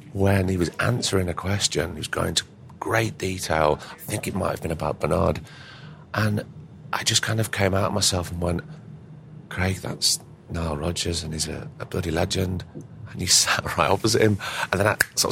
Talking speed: 200 wpm